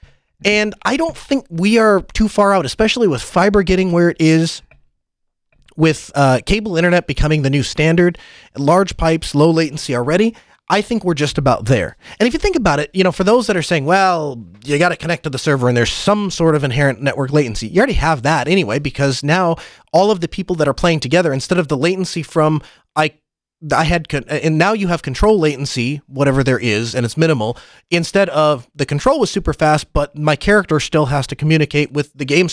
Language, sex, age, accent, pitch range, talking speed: English, male, 30-49, American, 140-180 Hz, 215 wpm